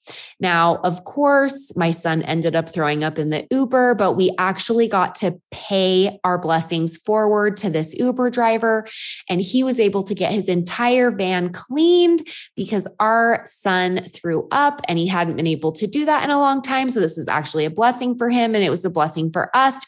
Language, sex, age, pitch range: English, female, 20-39, 175-235 Hz